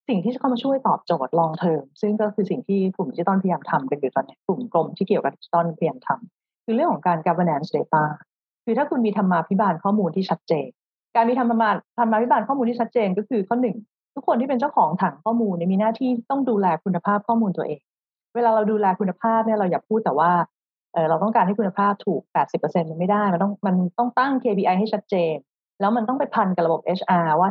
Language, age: Thai, 30-49